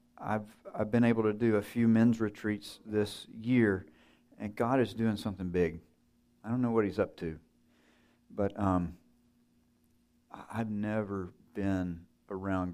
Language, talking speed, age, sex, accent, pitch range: English, 145 wpm, 50-69, male, American, 90-110 Hz